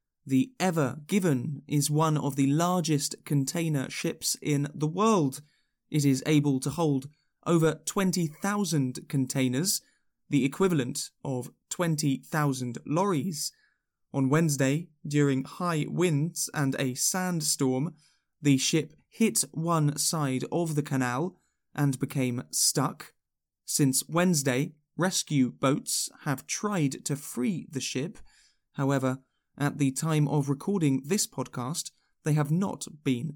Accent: British